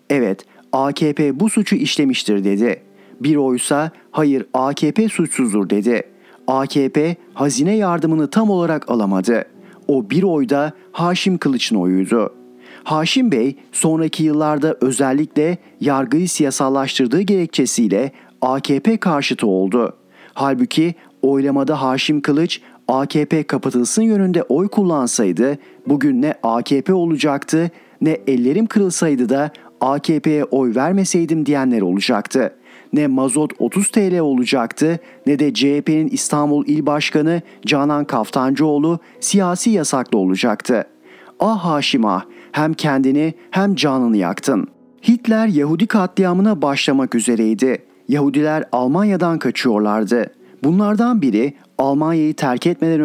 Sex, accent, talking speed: male, native, 105 wpm